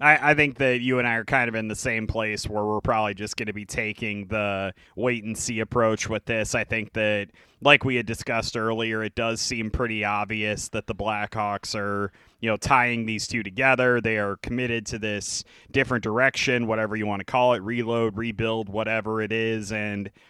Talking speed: 200 wpm